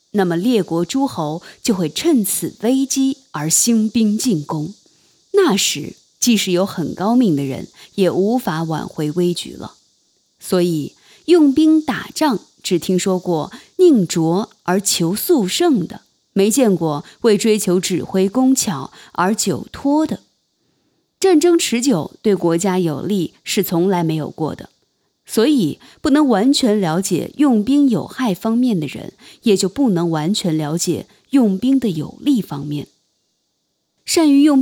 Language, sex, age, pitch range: Chinese, female, 20-39, 175-270 Hz